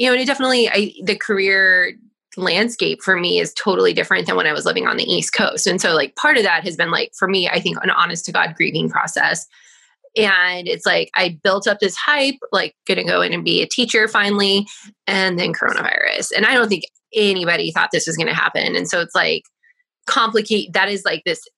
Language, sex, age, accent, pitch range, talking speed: English, female, 20-39, American, 190-260 Hz, 230 wpm